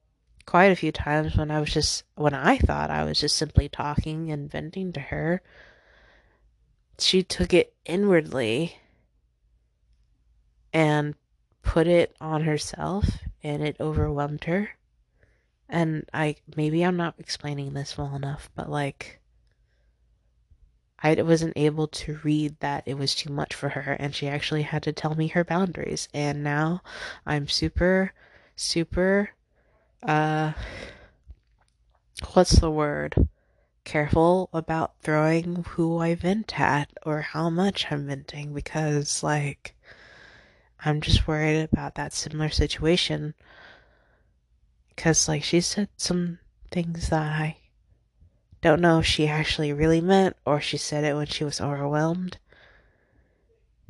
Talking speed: 130 wpm